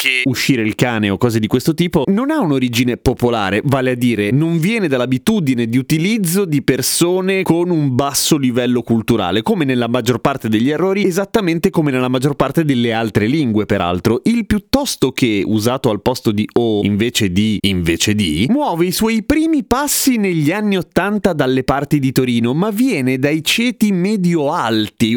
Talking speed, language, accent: 170 wpm, Italian, native